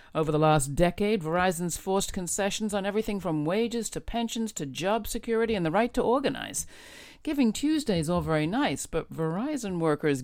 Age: 50-69